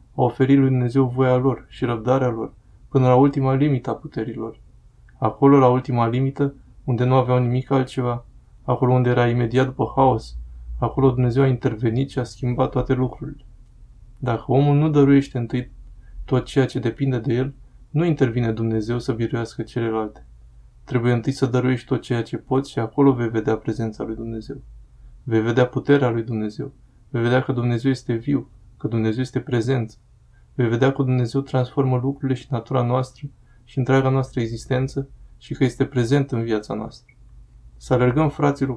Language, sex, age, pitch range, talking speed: Romanian, male, 20-39, 115-135 Hz, 170 wpm